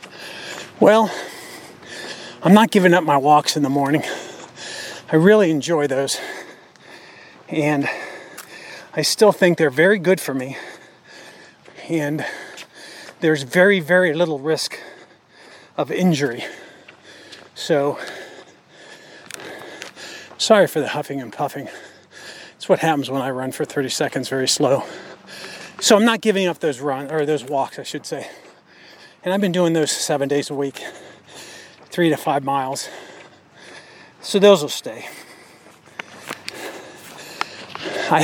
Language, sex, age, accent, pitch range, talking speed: English, male, 40-59, American, 145-185 Hz, 125 wpm